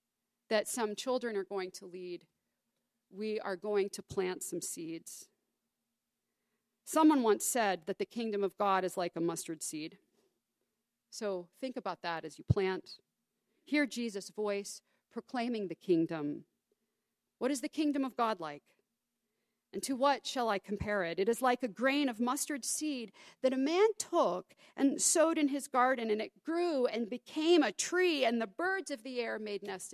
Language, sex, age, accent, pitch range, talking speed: English, female, 40-59, American, 195-265 Hz, 170 wpm